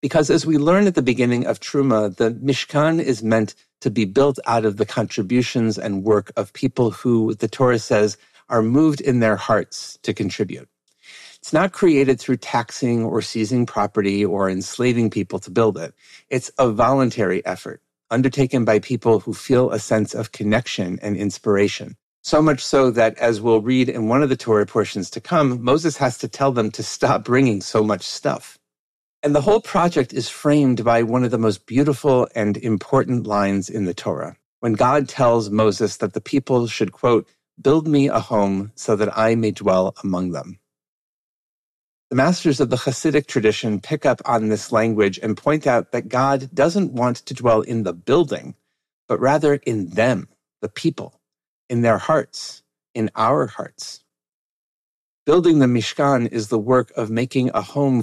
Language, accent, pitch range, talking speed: English, American, 110-135 Hz, 180 wpm